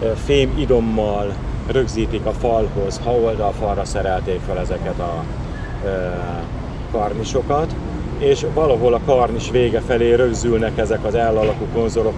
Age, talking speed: 40-59, 120 wpm